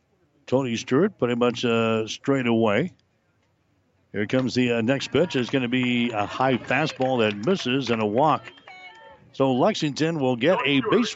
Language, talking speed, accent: English, 165 wpm, American